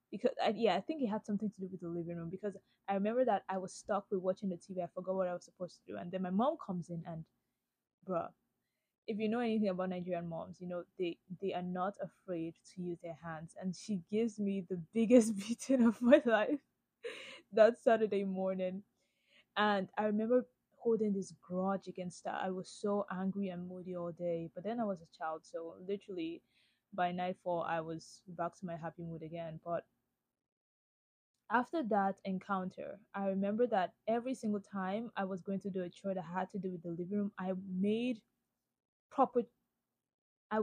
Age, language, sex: 20-39, English, female